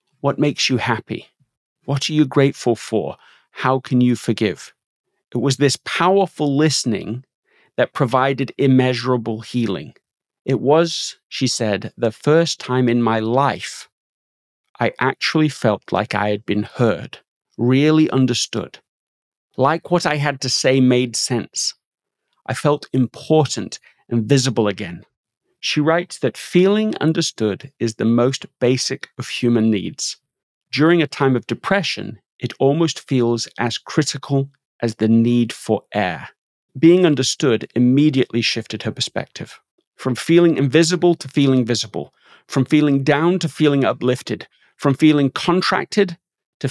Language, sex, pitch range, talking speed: English, male, 120-150 Hz, 135 wpm